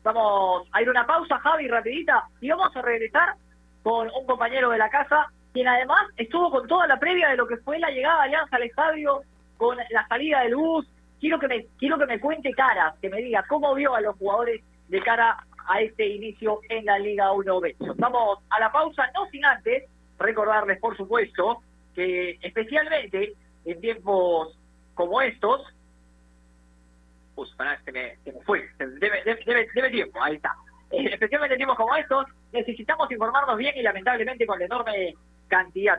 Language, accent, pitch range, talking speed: Spanish, Argentinian, 195-275 Hz, 180 wpm